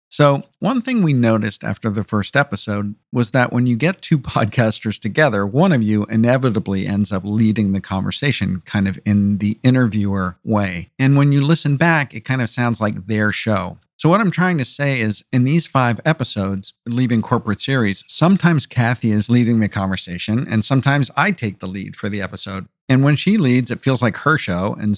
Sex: male